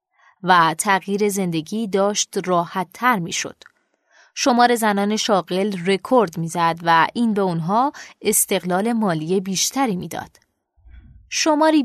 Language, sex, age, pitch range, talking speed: Persian, female, 20-39, 180-230 Hz, 105 wpm